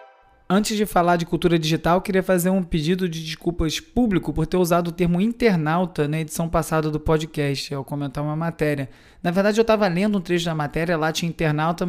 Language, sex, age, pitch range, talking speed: Portuguese, male, 20-39, 155-180 Hz, 205 wpm